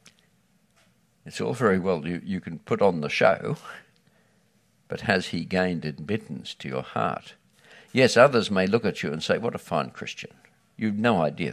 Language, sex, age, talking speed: English, male, 60-79, 175 wpm